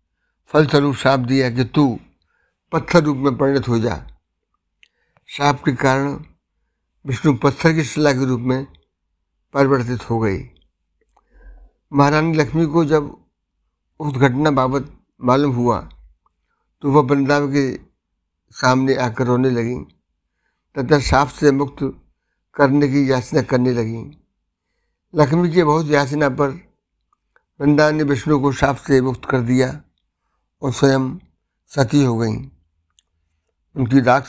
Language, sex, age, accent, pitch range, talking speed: Hindi, male, 60-79, native, 115-145 Hz, 125 wpm